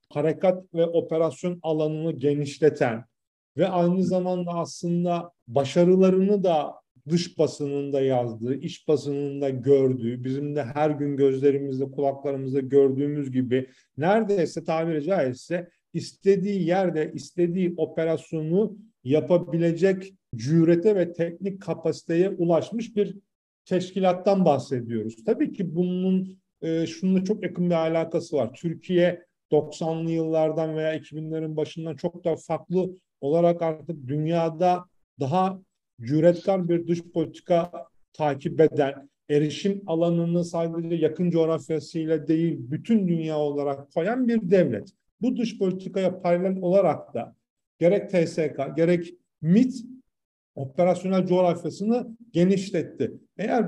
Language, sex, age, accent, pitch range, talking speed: Turkish, male, 40-59, native, 150-185 Hz, 110 wpm